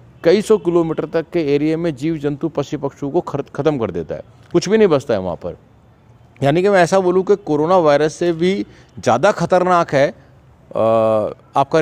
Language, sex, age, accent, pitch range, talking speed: Hindi, male, 40-59, native, 140-175 Hz, 190 wpm